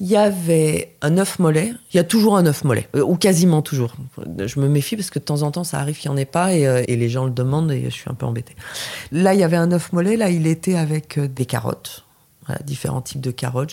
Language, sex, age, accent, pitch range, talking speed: French, female, 30-49, French, 130-170 Hz, 275 wpm